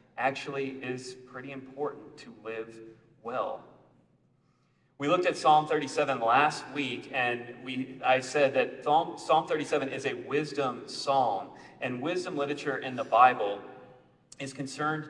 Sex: male